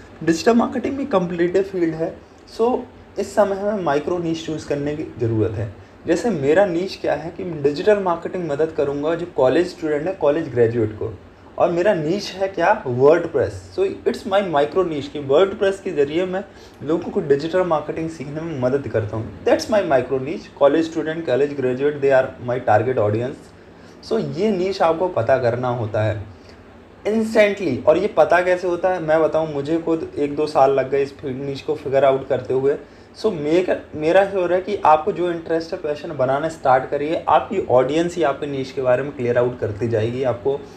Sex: male